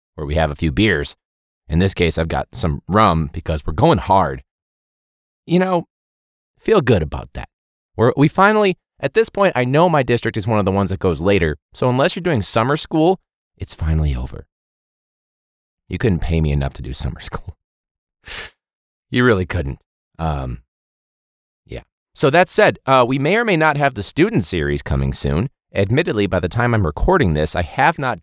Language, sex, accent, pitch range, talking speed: English, male, American, 80-120 Hz, 190 wpm